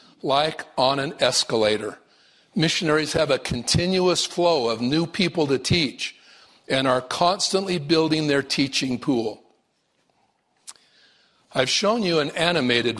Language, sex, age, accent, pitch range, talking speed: English, male, 50-69, American, 125-155 Hz, 120 wpm